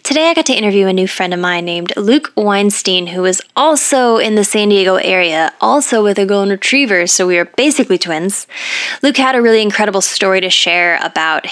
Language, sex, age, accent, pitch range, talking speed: English, female, 10-29, American, 175-220 Hz, 210 wpm